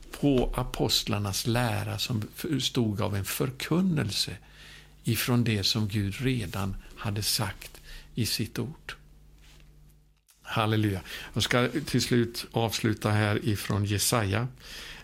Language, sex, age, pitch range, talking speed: Swedish, male, 60-79, 100-125 Hz, 110 wpm